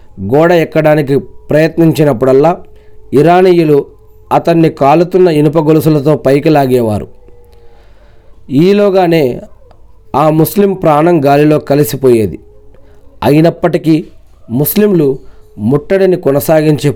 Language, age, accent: Telugu, 40-59, native